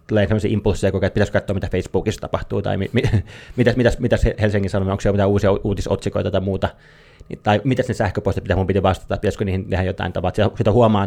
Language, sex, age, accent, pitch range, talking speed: Finnish, male, 20-39, native, 95-110 Hz, 205 wpm